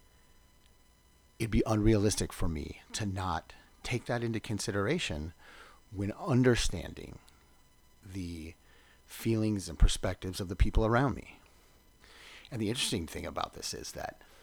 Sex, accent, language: male, American, English